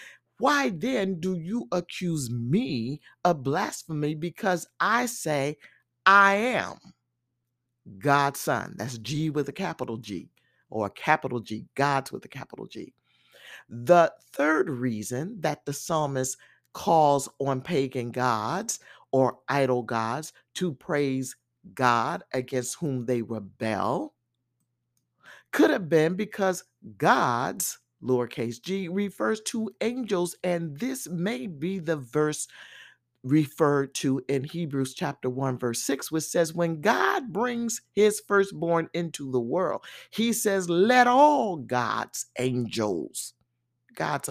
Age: 50-69